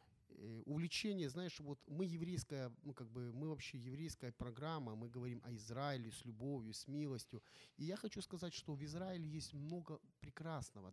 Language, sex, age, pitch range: Ukrainian, male, 30-49, 120-150 Hz